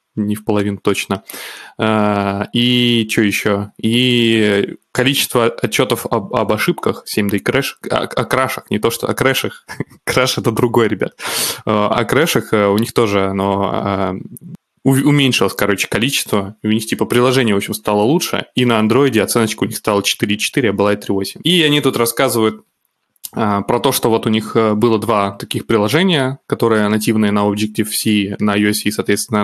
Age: 20-39